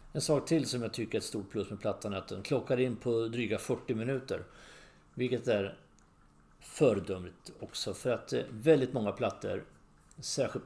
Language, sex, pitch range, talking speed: English, male, 100-120 Hz, 175 wpm